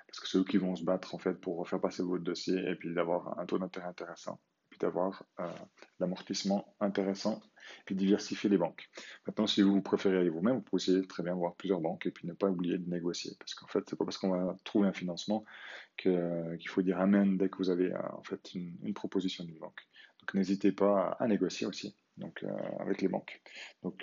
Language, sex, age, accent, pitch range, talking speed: French, male, 20-39, French, 90-100 Hz, 235 wpm